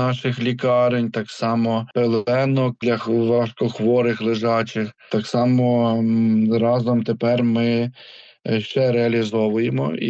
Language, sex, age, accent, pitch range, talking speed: Ukrainian, male, 20-39, Serbian, 115-140 Hz, 95 wpm